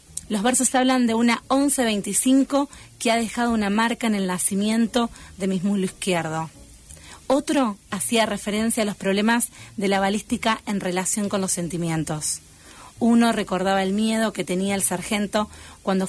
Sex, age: female, 30-49